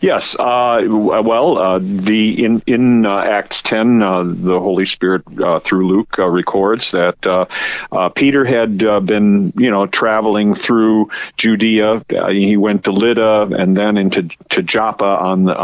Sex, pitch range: male, 95-115 Hz